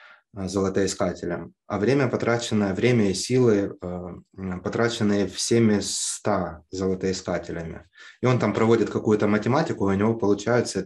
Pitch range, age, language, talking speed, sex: 95-110 Hz, 20-39, Russian, 110 wpm, male